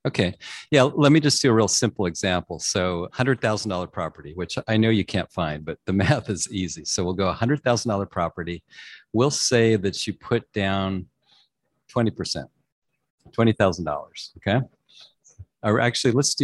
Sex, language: male, English